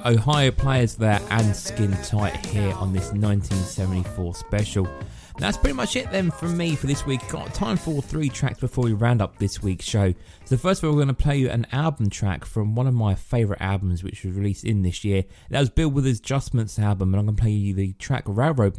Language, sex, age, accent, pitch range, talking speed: English, male, 20-39, British, 95-130 Hz, 230 wpm